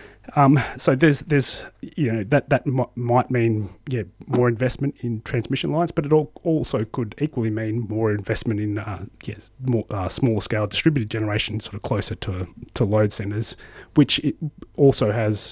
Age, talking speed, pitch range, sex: 30-49, 180 wpm, 105-120 Hz, male